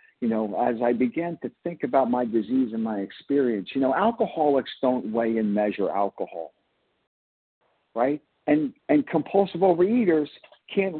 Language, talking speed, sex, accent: English, 145 wpm, male, American